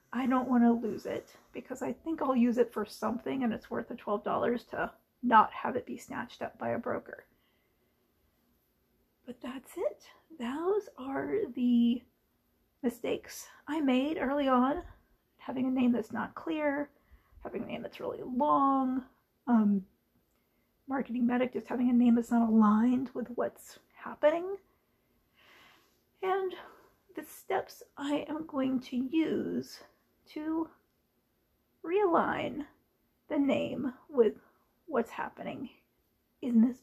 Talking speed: 135 wpm